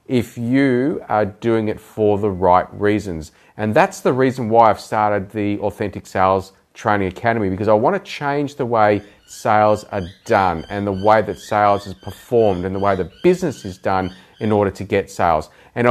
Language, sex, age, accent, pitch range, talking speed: English, male, 30-49, Australian, 100-125 Hz, 190 wpm